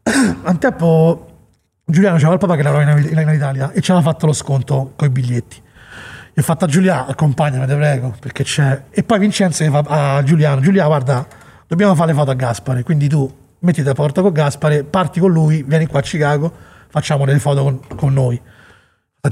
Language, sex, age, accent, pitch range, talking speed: Italian, male, 30-49, native, 145-200 Hz, 210 wpm